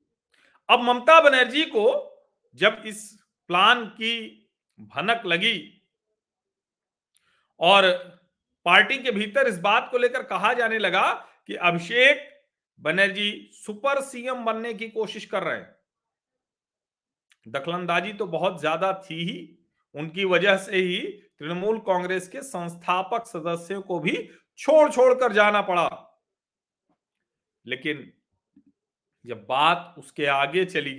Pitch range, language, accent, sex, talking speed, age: 165-235 Hz, Hindi, native, male, 115 wpm, 40-59